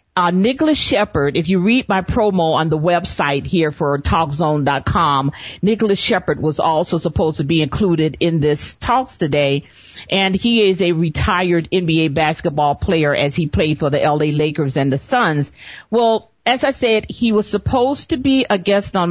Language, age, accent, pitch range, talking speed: English, 50-69, American, 150-200 Hz, 175 wpm